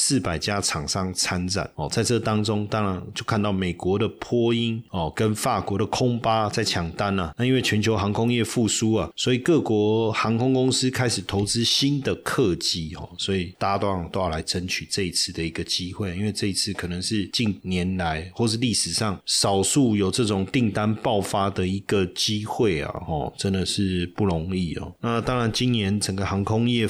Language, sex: Chinese, male